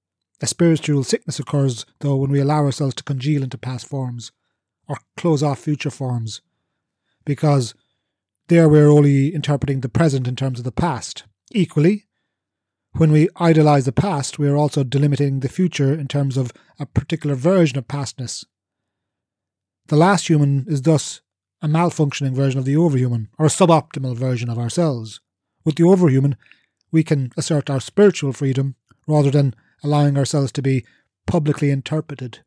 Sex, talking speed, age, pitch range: male, 160 wpm, 30-49, 130-155 Hz